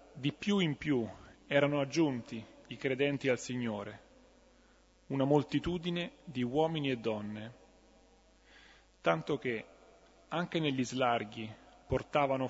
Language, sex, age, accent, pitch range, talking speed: Italian, male, 30-49, native, 120-150 Hz, 105 wpm